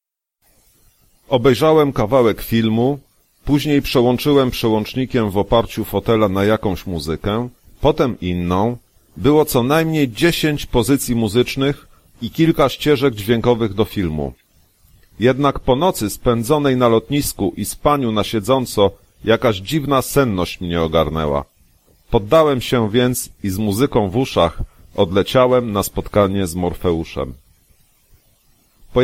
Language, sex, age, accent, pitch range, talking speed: Polish, male, 40-59, native, 100-130 Hz, 115 wpm